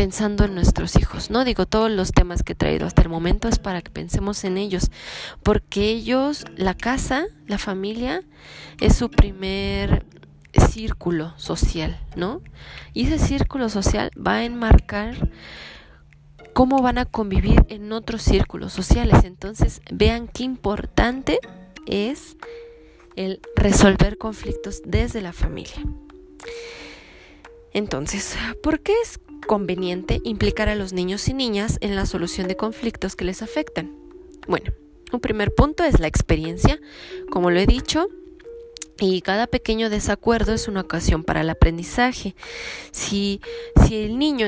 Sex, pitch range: female, 170-245 Hz